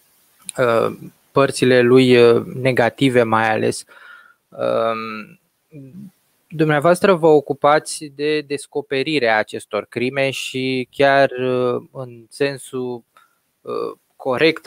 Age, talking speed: 20-39, 70 wpm